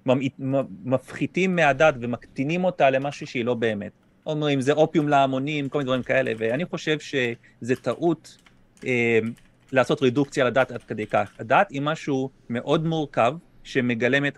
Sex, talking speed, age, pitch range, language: male, 140 wpm, 30-49, 125-160 Hz, Hebrew